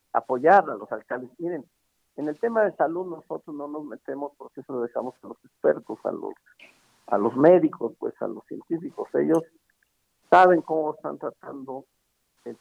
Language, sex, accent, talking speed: Spanish, male, Mexican, 170 wpm